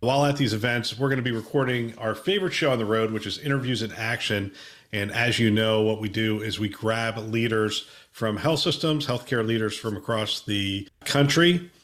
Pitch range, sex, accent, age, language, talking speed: 110-135 Hz, male, American, 40-59, English, 200 wpm